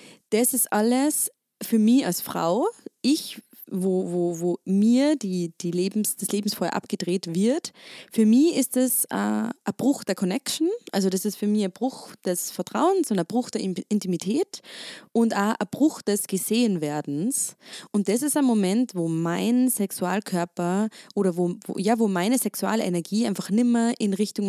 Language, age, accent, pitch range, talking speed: German, 20-39, German, 185-230 Hz, 170 wpm